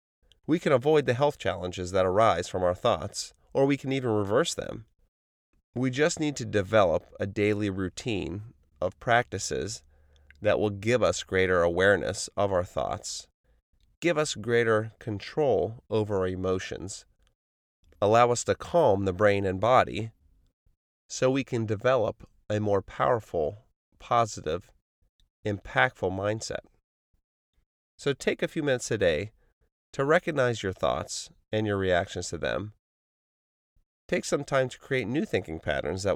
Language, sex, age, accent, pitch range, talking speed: English, male, 30-49, American, 95-120 Hz, 145 wpm